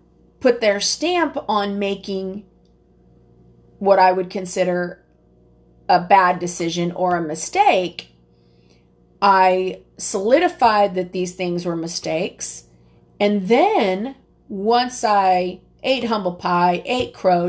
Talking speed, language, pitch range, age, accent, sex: 105 wpm, English, 170-235 Hz, 30-49, American, female